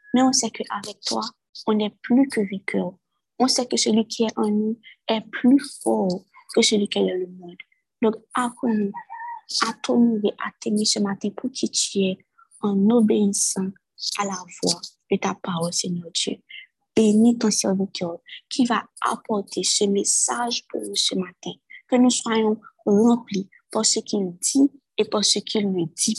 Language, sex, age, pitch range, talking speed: French, female, 20-39, 195-240 Hz, 180 wpm